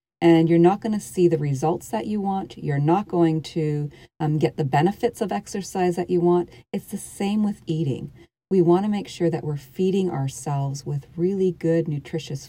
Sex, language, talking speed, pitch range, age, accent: female, English, 200 wpm, 145-175 Hz, 40-59, American